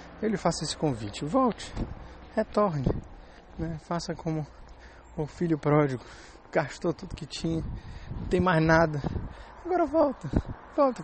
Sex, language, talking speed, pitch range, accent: male, Portuguese, 130 wpm, 130-160 Hz, Brazilian